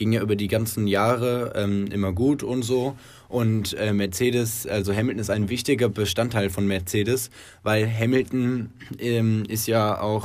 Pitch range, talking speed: 100-115 Hz, 165 wpm